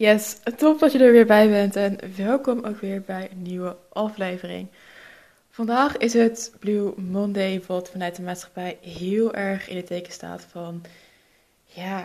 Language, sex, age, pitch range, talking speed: Dutch, female, 20-39, 180-210 Hz, 165 wpm